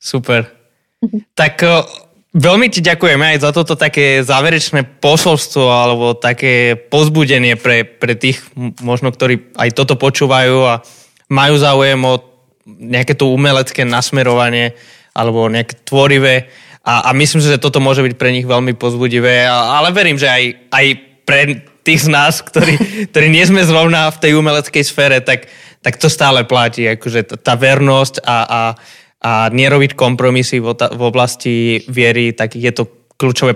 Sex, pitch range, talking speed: male, 120-145 Hz, 150 wpm